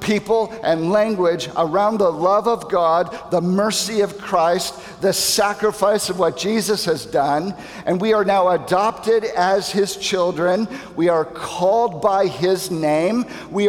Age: 50-69